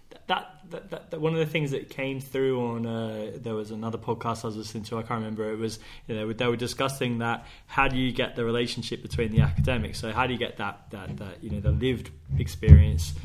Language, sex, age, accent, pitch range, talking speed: English, male, 20-39, British, 110-130 Hz, 255 wpm